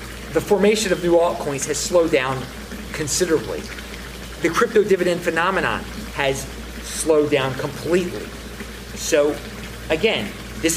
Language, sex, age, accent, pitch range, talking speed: English, male, 30-49, American, 135-200 Hz, 110 wpm